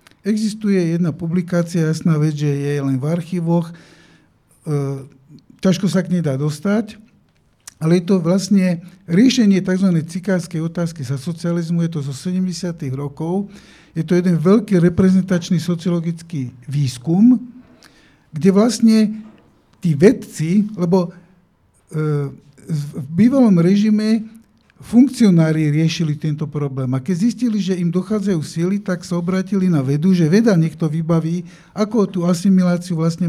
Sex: male